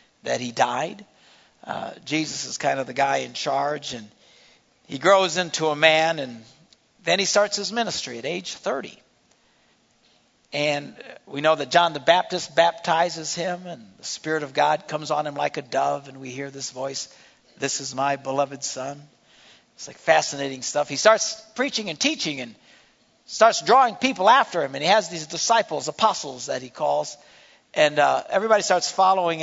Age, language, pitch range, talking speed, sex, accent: 60-79, English, 140-195 Hz, 175 wpm, male, American